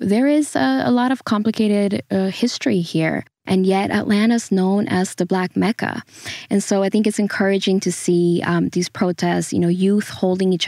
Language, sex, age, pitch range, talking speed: English, female, 10-29, 175-195 Hz, 190 wpm